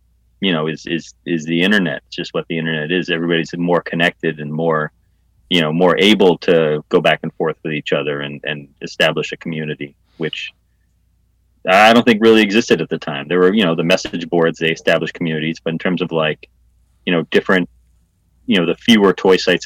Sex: male